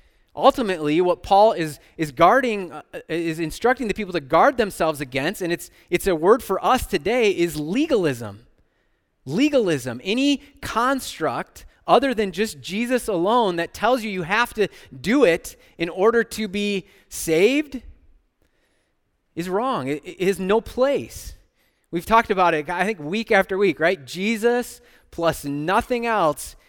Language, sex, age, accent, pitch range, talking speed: English, male, 30-49, American, 160-225 Hz, 150 wpm